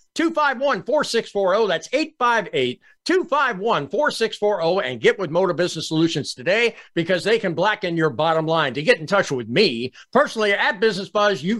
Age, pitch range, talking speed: 50-69, 165-230 Hz, 140 wpm